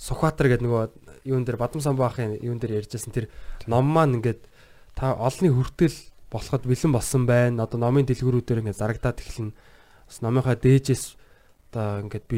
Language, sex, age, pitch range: Korean, male, 20-39, 105-125 Hz